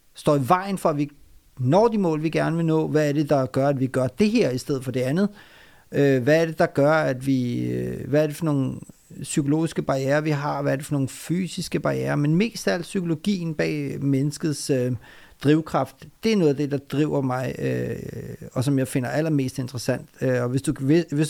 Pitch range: 130-155 Hz